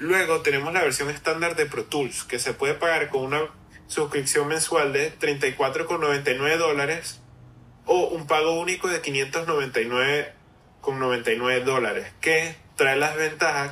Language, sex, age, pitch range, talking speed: Spanish, male, 10-29, 145-170 Hz, 130 wpm